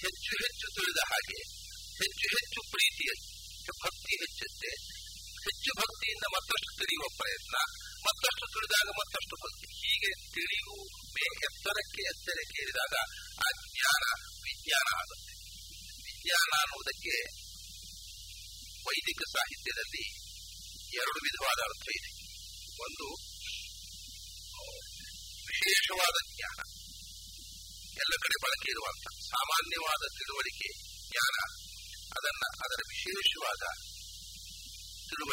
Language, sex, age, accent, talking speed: English, male, 50-69, Indian, 75 wpm